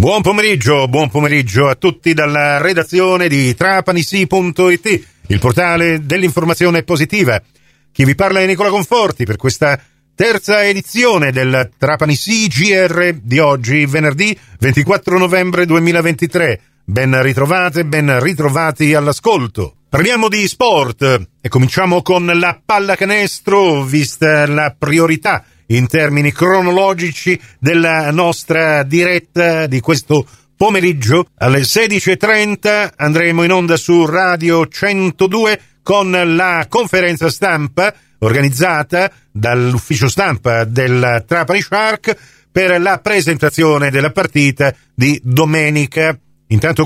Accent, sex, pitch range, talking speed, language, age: native, male, 135-180 Hz, 110 wpm, Italian, 40-59